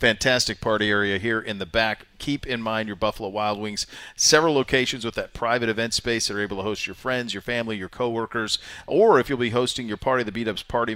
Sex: male